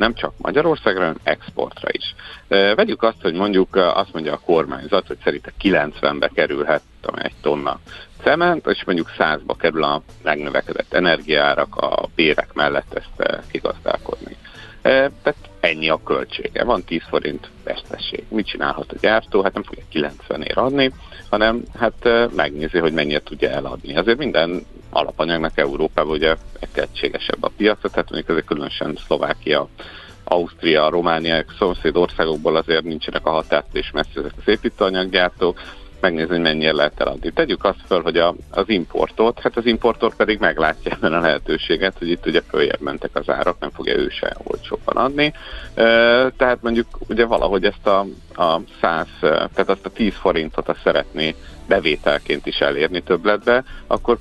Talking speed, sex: 155 wpm, male